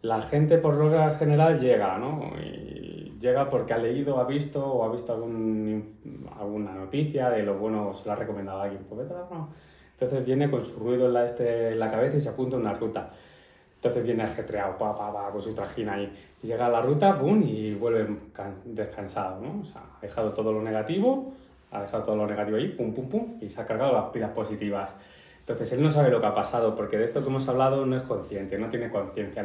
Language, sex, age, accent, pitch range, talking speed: Spanish, male, 20-39, Spanish, 105-130 Hz, 225 wpm